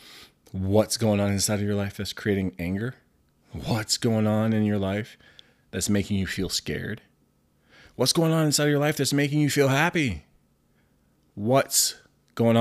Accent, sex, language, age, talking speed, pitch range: American, male, English, 30-49, 165 wpm, 95-125 Hz